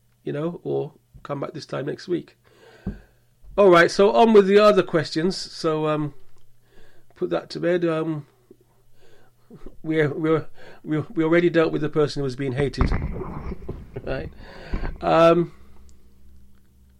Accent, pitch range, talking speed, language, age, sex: British, 120-165 Hz, 140 wpm, English, 40-59, male